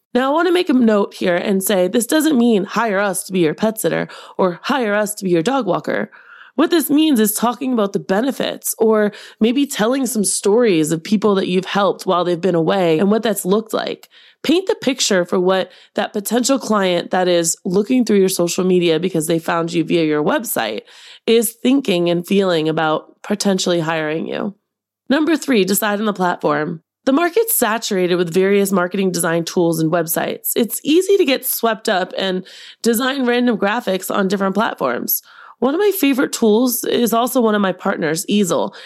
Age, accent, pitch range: 20-39, American, 180-245 Hz